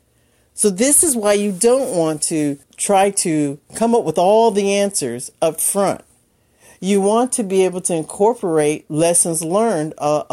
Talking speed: 165 wpm